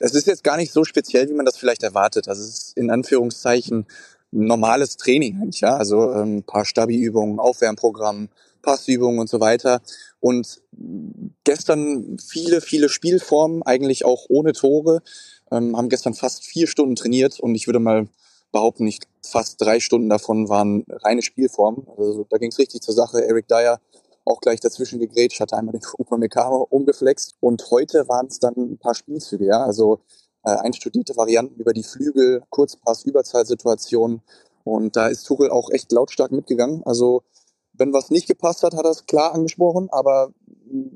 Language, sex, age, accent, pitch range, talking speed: German, male, 20-39, German, 115-145 Hz, 165 wpm